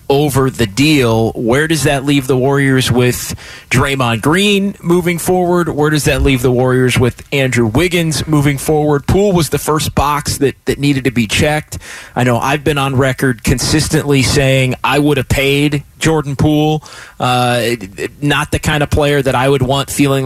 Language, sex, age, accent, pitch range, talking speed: English, male, 30-49, American, 135-160 Hz, 185 wpm